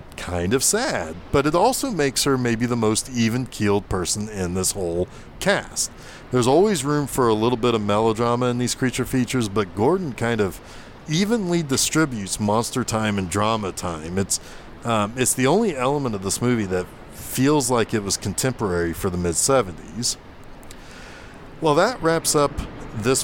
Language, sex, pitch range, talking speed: English, male, 100-130 Hz, 165 wpm